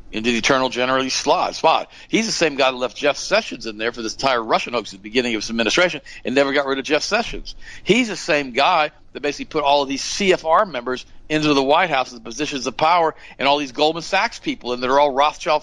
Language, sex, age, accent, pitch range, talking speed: English, male, 50-69, American, 115-155 Hz, 245 wpm